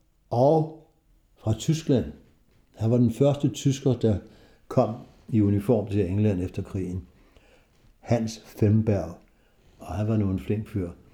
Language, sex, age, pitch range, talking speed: Danish, male, 60-79, 100-125 Hz, 130 wpm